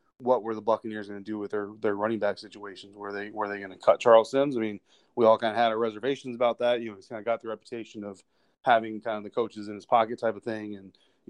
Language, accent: English, American